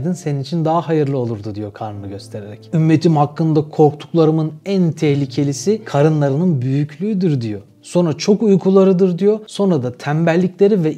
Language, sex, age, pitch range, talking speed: Turkish, male, 30-49, 135-180 Hz, 130 wpm